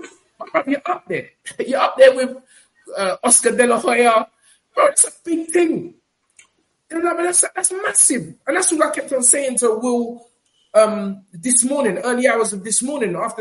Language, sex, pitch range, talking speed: English, male, 160-235 Hz, 185 wpm